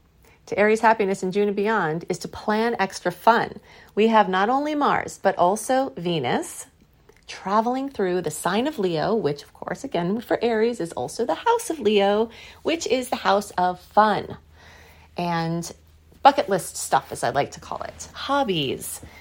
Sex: female